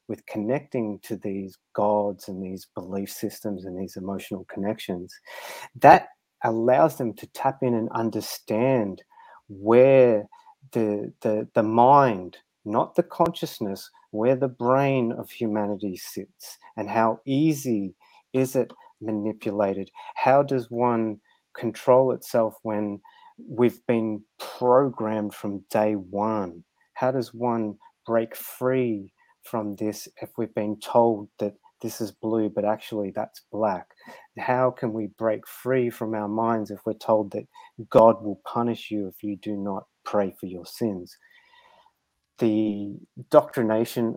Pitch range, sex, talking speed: 105-125 Hz, male, 135 wpm